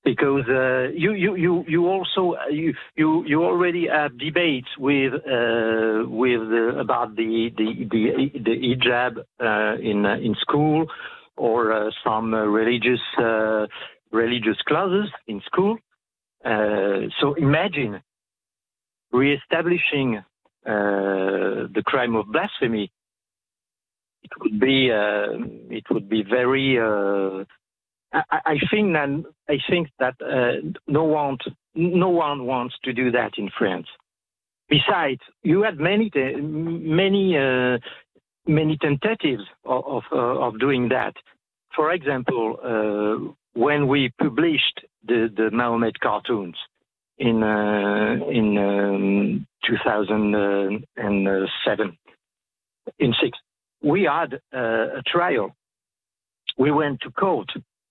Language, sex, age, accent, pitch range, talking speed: Danish, male, 50-69, French, 105-150 Hz, 115 wpm